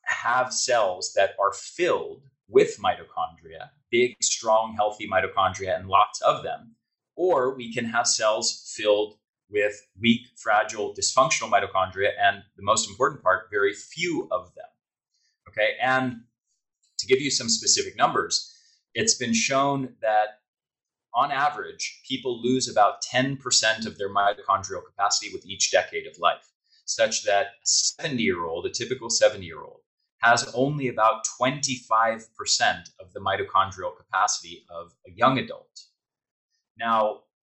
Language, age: English, 30-49